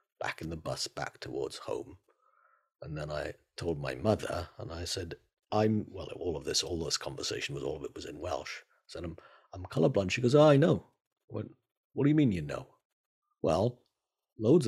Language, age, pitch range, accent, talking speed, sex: English, 50-69, 95-145 Hz, British, 195 wpm, male